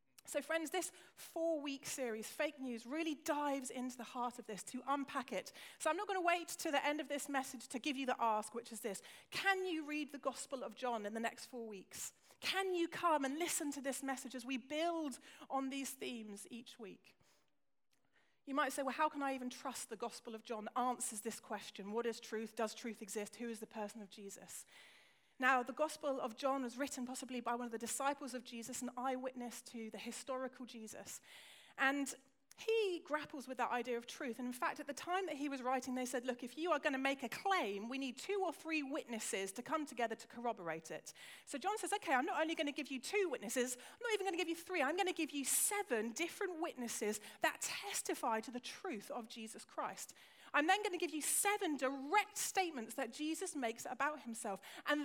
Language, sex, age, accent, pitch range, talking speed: English, female, 30-49, British, 235-315 Hz, 225 wpm